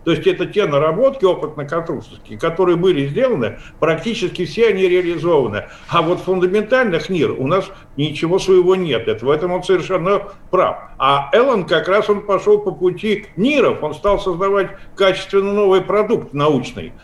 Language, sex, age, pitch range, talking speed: Russian, male, 50-69, 155-200 Hz, 155 wpm